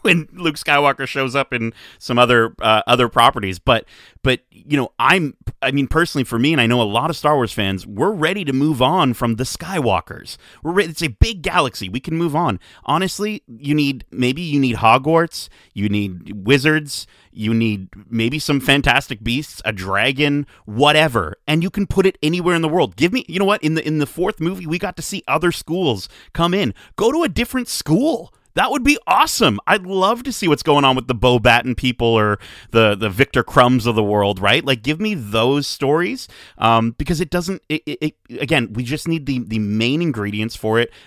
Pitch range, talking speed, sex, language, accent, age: 110-155 Hz, 215 wpm, male, English, American, 30-49